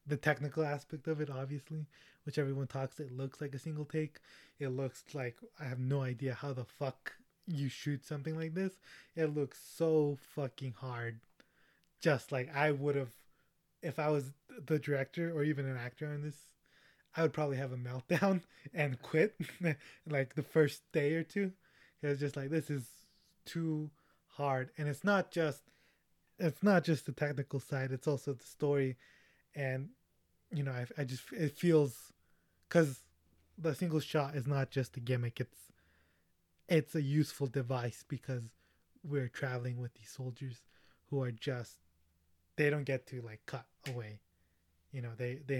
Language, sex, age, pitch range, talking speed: English, male, 20-39, 125-150 Hz, 170 wpm